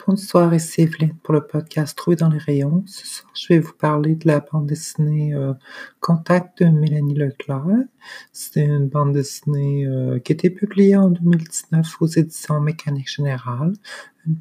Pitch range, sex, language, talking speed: 140-160 Hz, male, French, 155 wpm